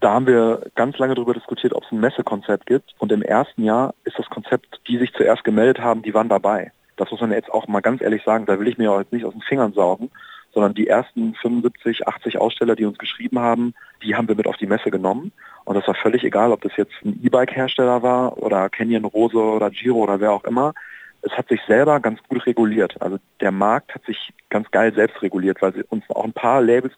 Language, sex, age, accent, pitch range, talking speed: German, male, 40-59, German, 110-125 Hz, 240 wpm